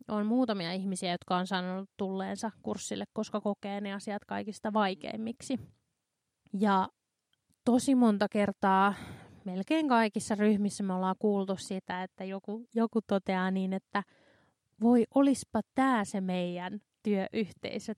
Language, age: Finnish, 20-39